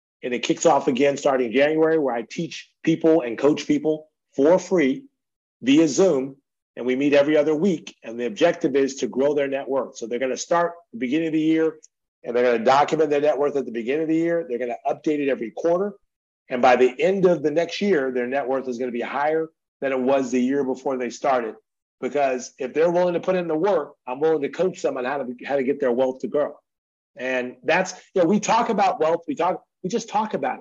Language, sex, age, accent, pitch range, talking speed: English, male, 40-59, American, 130-170 Hz, 245 wpm